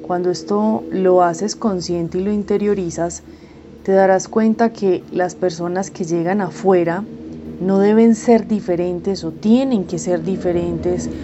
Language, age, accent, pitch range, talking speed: Spanish, 20-39, Colombian, 175-200 Hz, 140 wpm